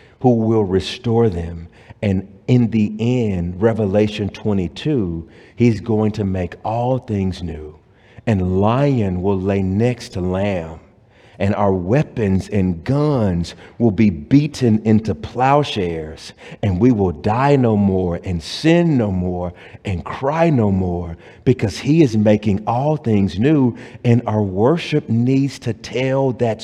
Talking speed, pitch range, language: 140 wpm, 100-135 Hz, English